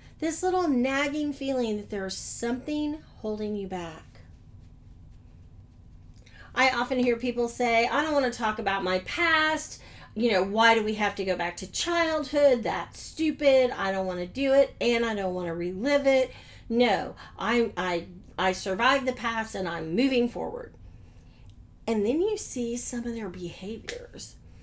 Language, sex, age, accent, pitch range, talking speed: English, female, 40-59, American, 185-255 Hz, 165 wpm